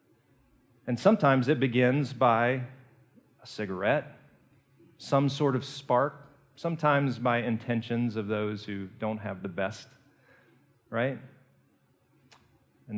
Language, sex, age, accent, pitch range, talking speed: English, male, 40-59, American, 115-145 Hz, 105 wpm